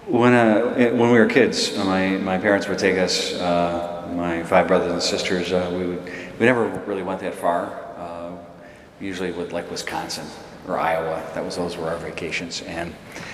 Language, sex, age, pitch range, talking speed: English, male, 40-59, 85-90 Hz, 185 wpm